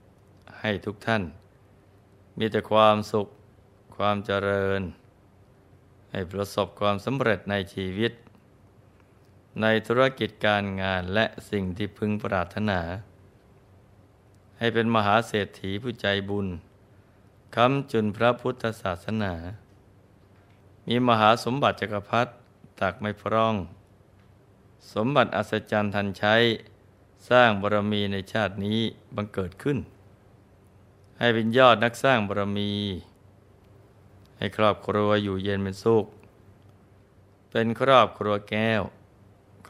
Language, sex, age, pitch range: Thai, male, 20-39, 100-110 Hz